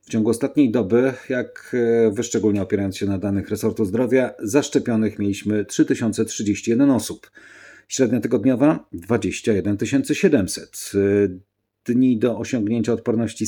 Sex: male